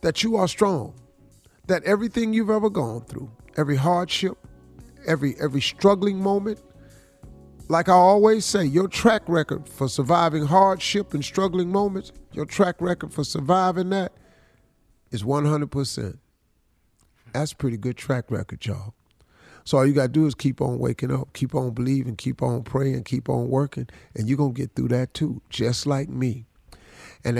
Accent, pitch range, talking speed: American, 130-200 Hz, 165 wpm